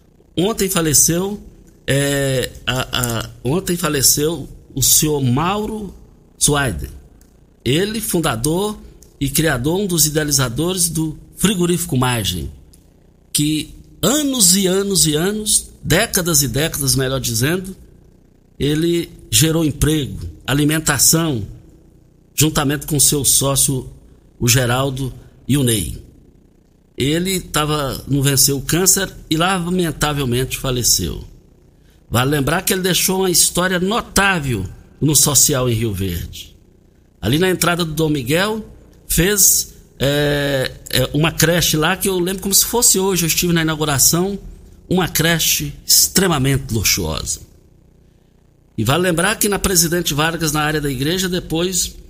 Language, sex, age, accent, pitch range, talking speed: Portuguese, male, 60-79, Brazilian, 125-175 Hz, 120 wpm